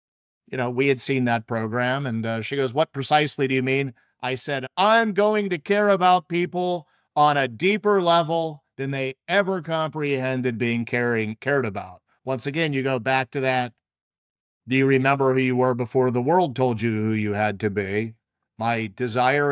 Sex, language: male, English